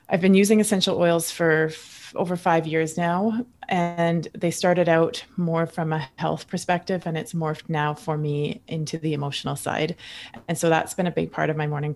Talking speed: 200 wpm